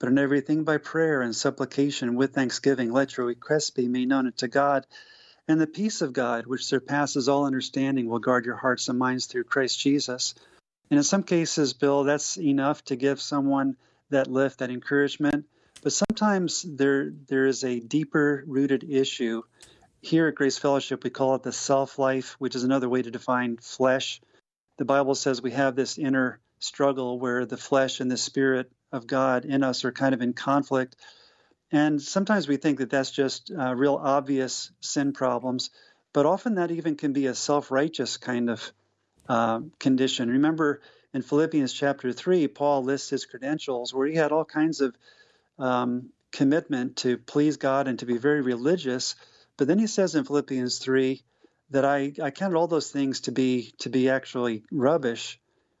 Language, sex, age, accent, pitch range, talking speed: English, male, 40-59, American, 130-145 Hz, 175 wpm